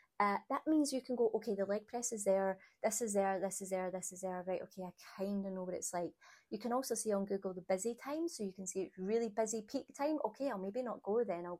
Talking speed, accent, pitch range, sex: 285 wpm, British, 185-225 Hz, female